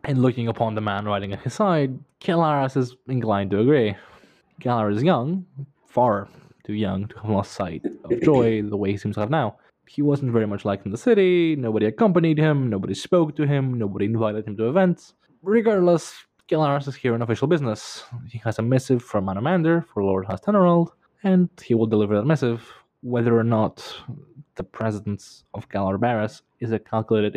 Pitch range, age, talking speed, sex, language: 105-150 Hz, 20-39, 185 wpm, male, English